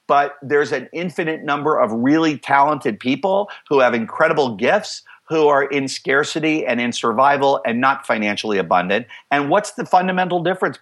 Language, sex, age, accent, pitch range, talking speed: English, male, 50-69, American, 120-155 Hz, 160 wpm